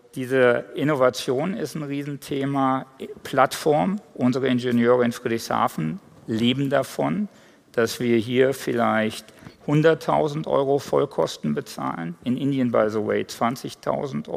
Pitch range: 115-140 Hz